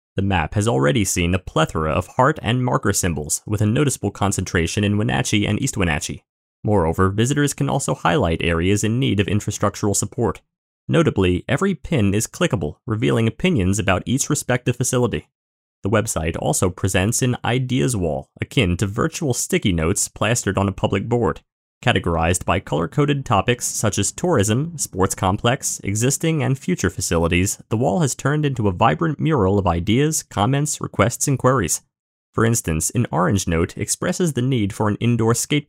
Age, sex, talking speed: 30-49, male, 165 wpm